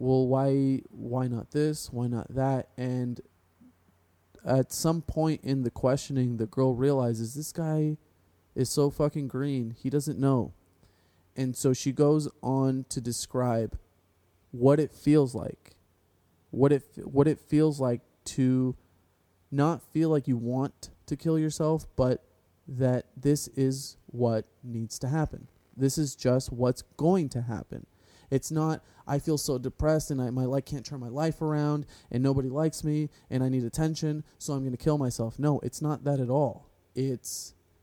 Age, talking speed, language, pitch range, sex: 20-39, 165 wpm, English, 120-145 Hz, male